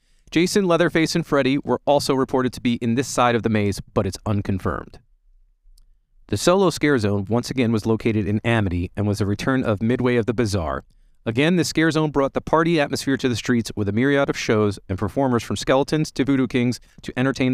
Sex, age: male, 30-49